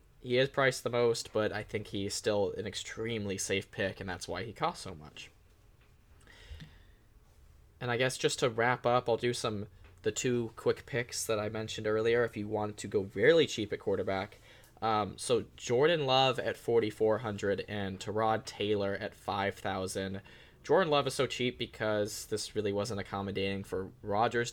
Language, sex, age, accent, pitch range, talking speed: English, male, 10-29, American, 100-120 Hz, 175 wpm